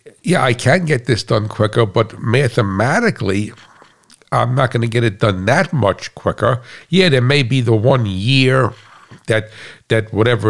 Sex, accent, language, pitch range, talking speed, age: male, American, English, 105-125 Hz, 165 wpm, 60-79